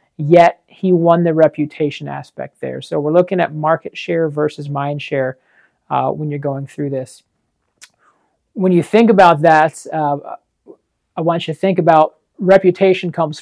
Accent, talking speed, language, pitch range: American, 160 wpm, English, 150-180 Hz